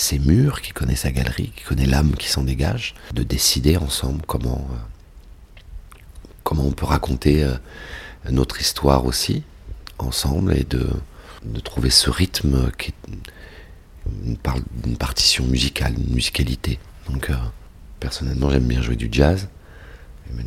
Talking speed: 145 wpm